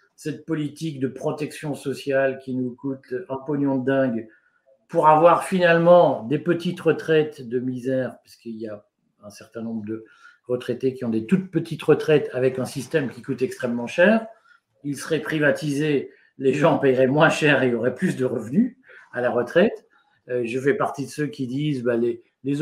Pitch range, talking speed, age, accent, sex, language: 120-155 Hz, 185 wpm, 50-69, French, male, French